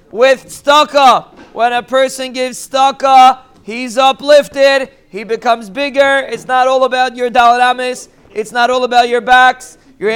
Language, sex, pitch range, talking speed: English, male, 245-275 Hz, 150 wpm